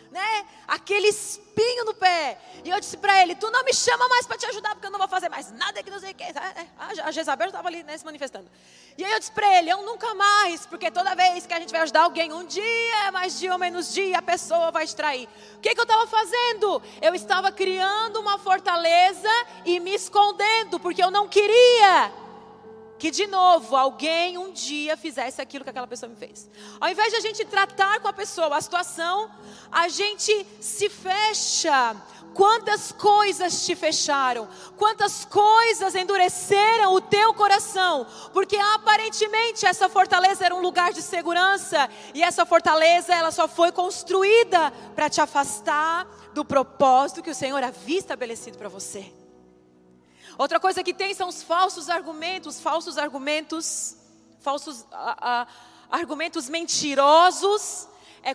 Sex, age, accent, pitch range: female, 30-49, Brazilian, 310-400 Hz